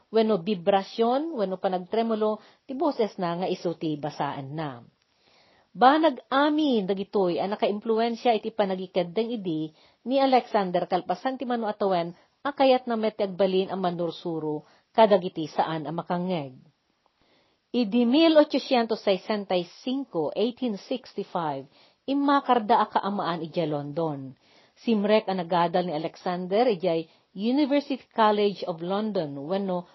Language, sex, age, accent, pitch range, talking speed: Filipino, female, 40-59, native, 180-235 Hz, 100 wpm